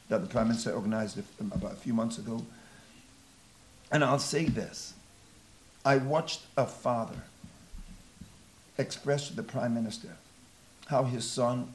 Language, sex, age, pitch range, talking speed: English, male, 50-69, 110-135 Hz, 135 wpm